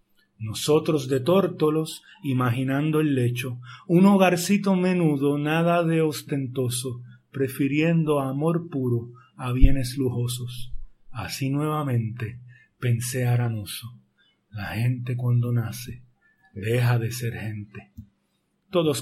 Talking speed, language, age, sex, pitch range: 100 wpm, Spanish, 30-49, male, 125-170 Hz